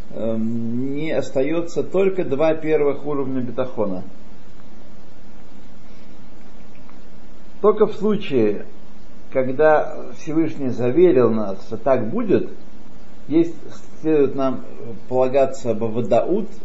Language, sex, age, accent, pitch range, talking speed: Russian, male, 50-69, native, 120-170 Hz, 85 wpm